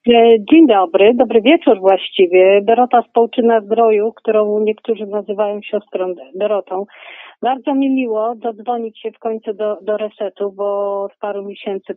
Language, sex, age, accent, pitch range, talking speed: Polish, female, 40-59, native, 215-260 Hz, 135 wpm